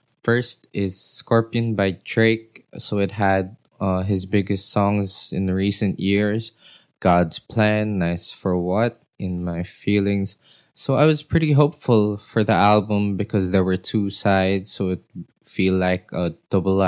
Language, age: English, 20-39